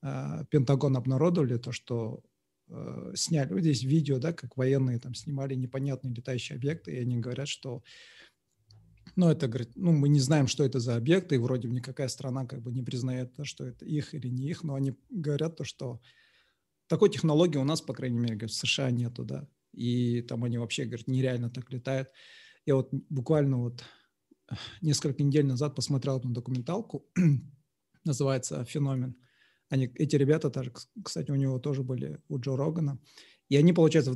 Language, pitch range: Russian, 130-150 Hz